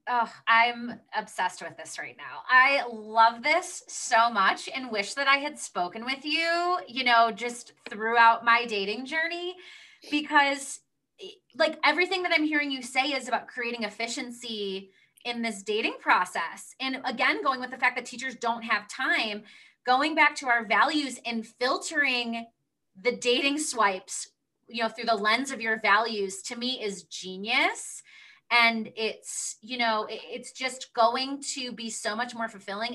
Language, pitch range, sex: English, 215-280 Hz, female